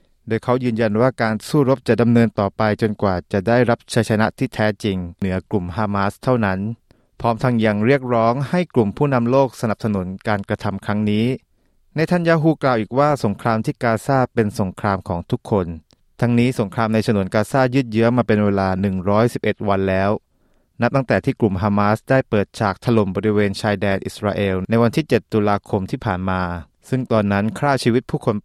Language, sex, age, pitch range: Thai, male, 20-39, 100-125 Hz